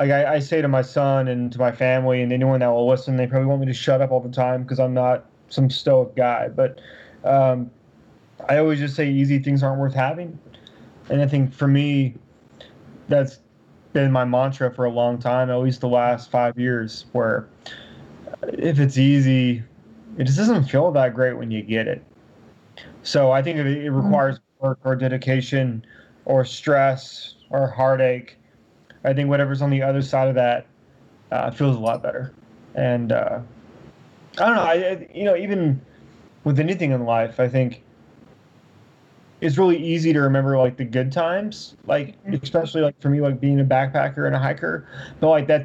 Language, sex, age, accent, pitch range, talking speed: English, male, 20-39, American, 125-145 Hz, 185 wpm